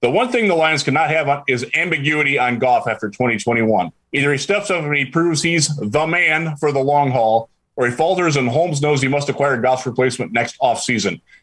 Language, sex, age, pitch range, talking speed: English, male, 30-49, 125-170 Hz, 215 wpm